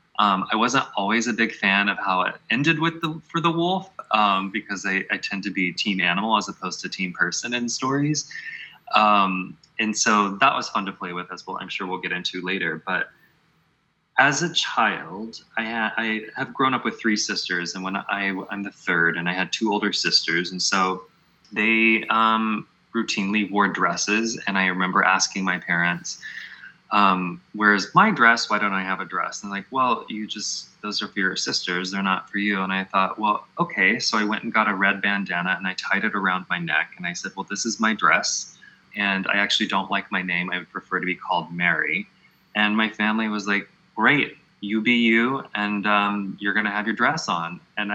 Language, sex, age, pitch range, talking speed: English, male, 20-39, 95-110 Hz, 215 wpm